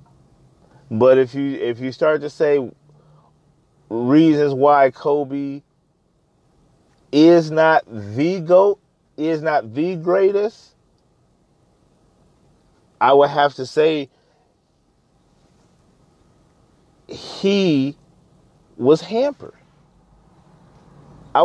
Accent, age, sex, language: American, 30-49, male, English